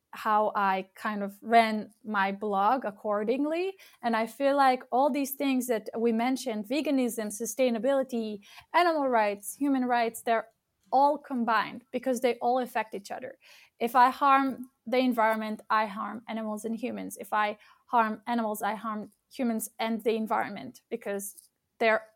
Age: 20-39